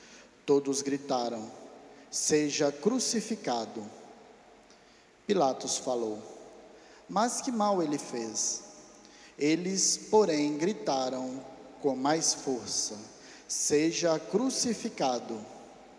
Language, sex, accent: Portuguese, male, Brazilian